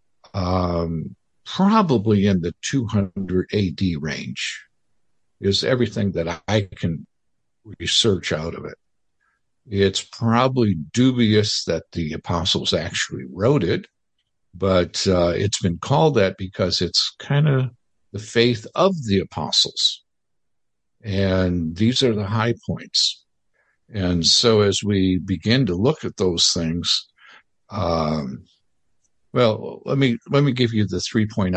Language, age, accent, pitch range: English, 60-79, American, 90-115 Hz